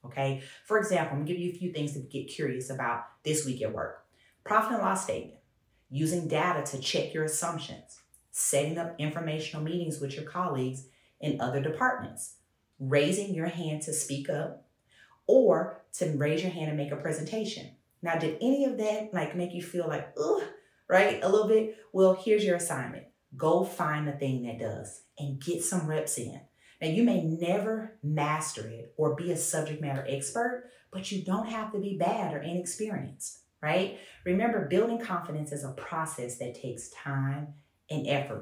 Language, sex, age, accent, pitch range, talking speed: English, female, 30-49, American, 135-180 Hz, 185 wpm